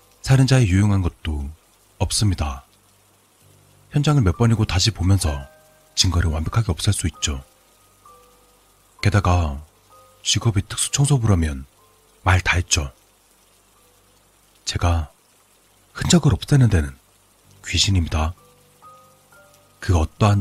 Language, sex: Korean, male